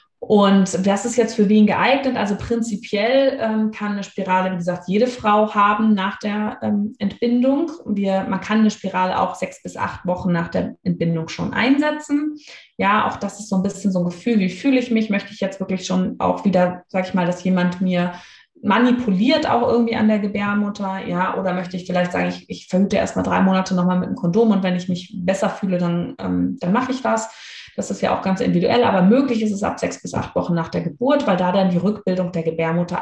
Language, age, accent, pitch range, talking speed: German, 20-39, German, 175-215 Hz, 225 wpm